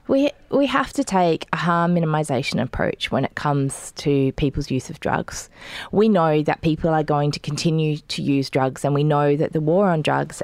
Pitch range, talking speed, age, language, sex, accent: 140-165 Hz, 205 wpm, 20-39, English, female, Australian